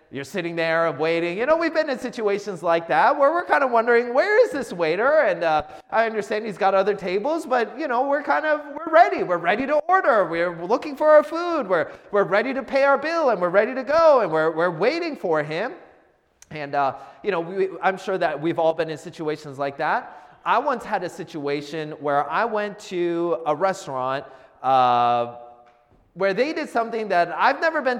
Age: 30-49